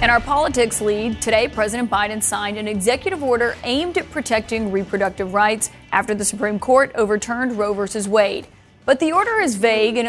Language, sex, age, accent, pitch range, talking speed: English, female, 30-49, American, 205-245 Hz, 180 wpm